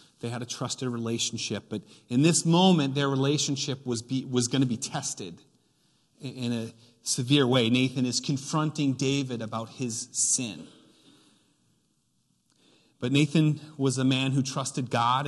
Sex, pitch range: male, 120-145 Hz